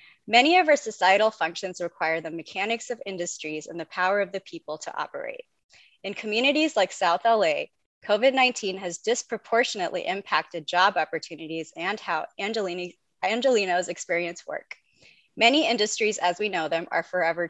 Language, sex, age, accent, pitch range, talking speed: English, female, 20-39, American, 170-220 Hz, 145 wpm